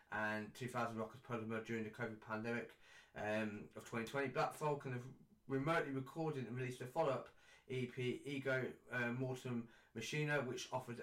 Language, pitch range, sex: English, 115-135 Hz, male